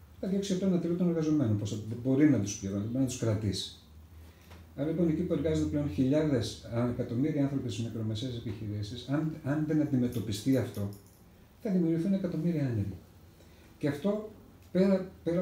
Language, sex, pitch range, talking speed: Greek, male, 105-150 Hz, 145 wpm